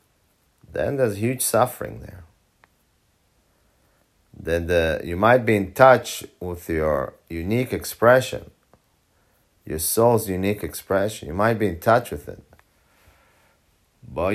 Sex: male